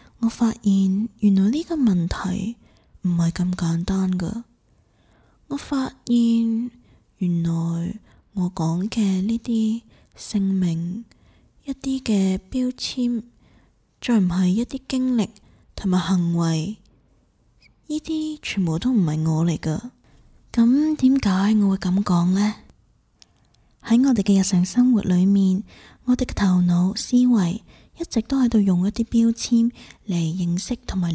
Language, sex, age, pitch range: Chinese, female, 20-39, 180-230 Hz